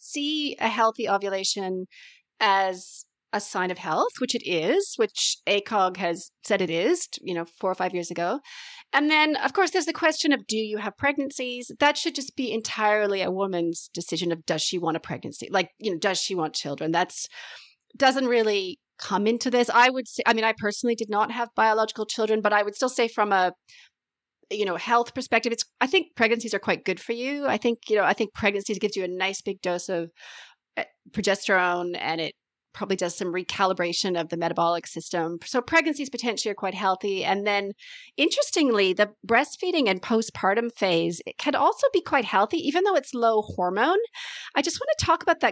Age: 30-49